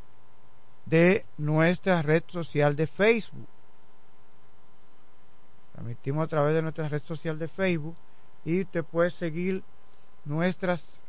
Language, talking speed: Spanish, 110 wpm